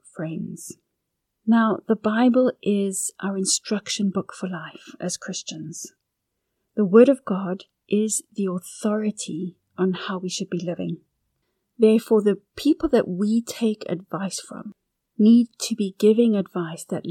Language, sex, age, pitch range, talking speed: English, female, 40-59, 185-220 Hz, 135 wpm